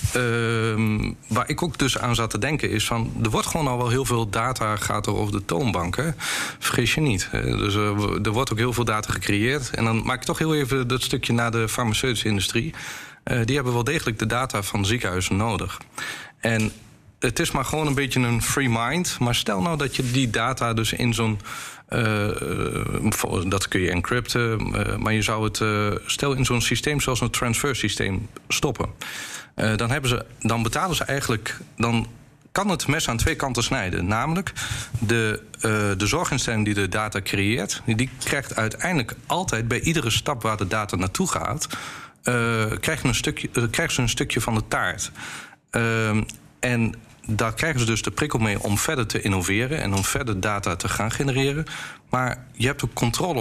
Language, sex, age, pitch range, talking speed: Dutch, male, 40-59, 110-130 Hz, 190 wpm